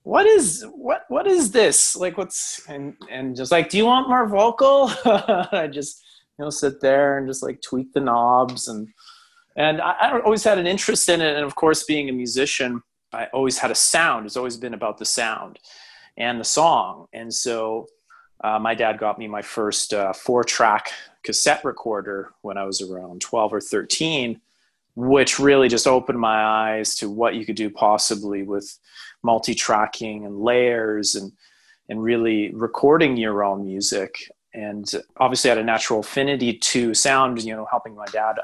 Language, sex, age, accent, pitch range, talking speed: English, male, 30-49, American, 110-150 Hz, 185 wpm